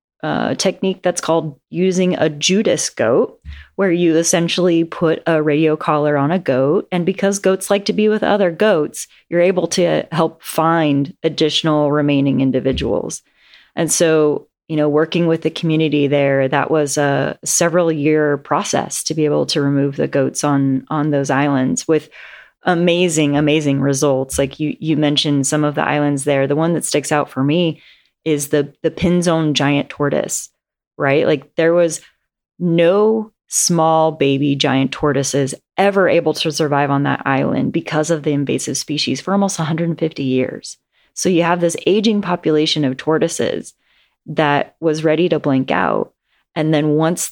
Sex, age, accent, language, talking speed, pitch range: female, 30-49, American, English, 165 wpm, 145-170 Hz